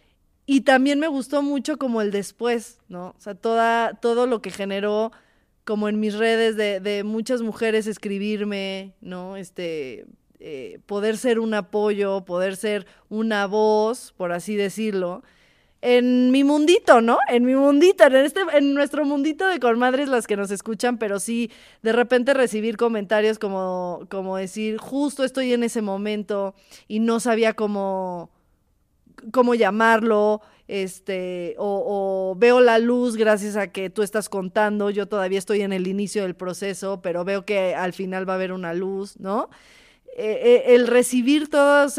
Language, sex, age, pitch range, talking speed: Spanish, female, 20-39, 195-235 Hz, 165 wpm